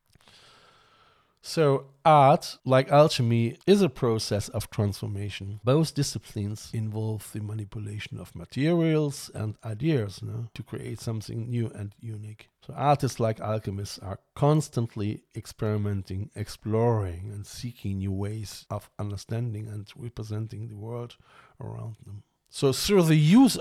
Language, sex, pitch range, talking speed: English, male, 105-145 Hz, 120 wpm